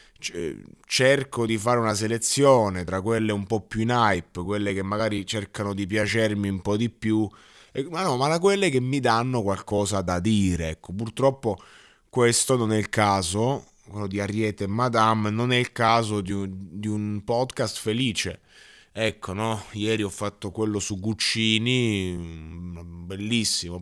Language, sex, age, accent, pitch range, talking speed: Italian, male, 20-39, native, 95-115 Hz, 160 wpm